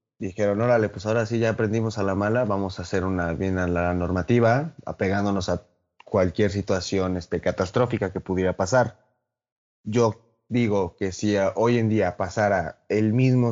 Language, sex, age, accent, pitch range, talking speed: Spanish, male, 20-39, Mexican, 90-110 Hz, 170 wpm